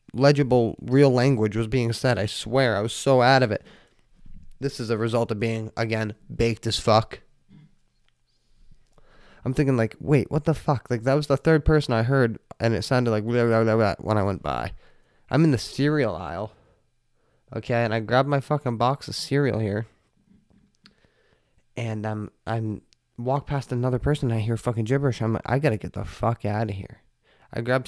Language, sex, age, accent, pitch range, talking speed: English, male, 20-39, American, 110-130 Hz, 190 wpm